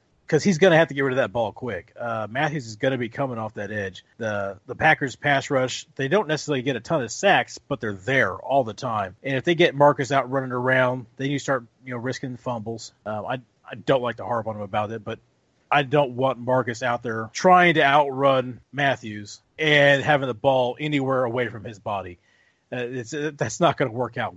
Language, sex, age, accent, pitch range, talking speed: English, male, 40-59, American, 120-150 Hz, 235 wpm